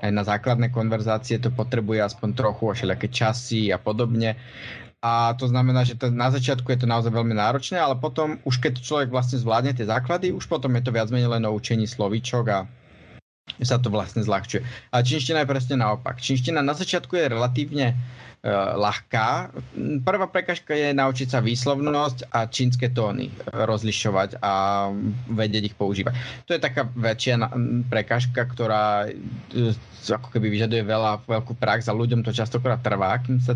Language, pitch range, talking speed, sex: Slovak, 110-130 Hz, 165 wpm, male